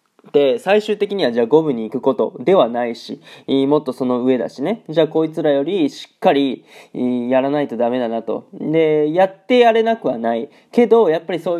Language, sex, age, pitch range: Japanese, male, 20-39, 125-160 Hz